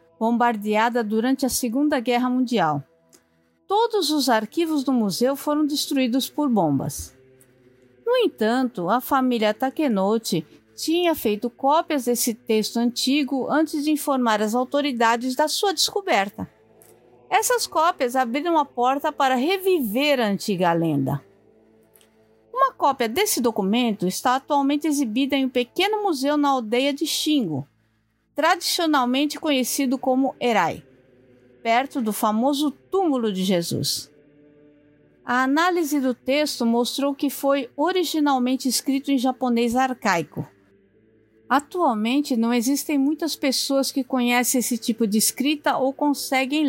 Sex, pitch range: female, 215-295 Hz